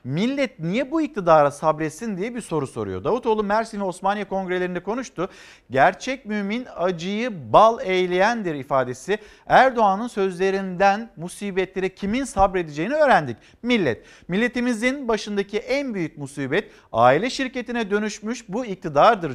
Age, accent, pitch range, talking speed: 50-69, native, 170-215 Hz, 120 wpm